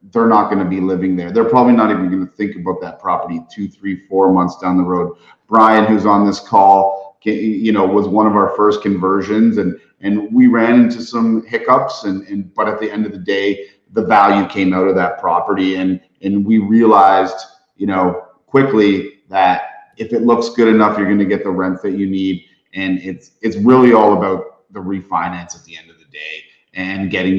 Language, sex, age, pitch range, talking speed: English, male, 30-49, 95-110 Hz, 215 wpm